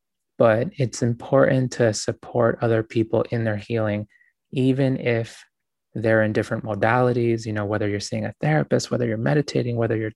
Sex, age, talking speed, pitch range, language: male, 20-39, 165 wpm, 110-120 Hz, English